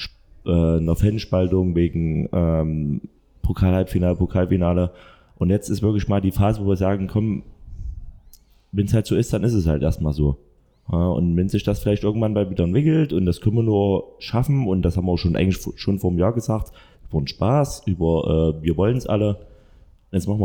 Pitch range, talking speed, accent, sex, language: 85-105 Hz, 205 wpm, German, male, German